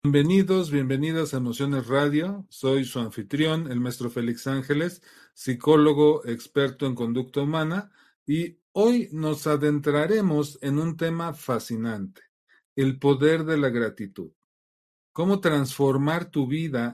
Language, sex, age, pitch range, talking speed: Spanish, male, 40-59, 125-155 Hz, 120 wpm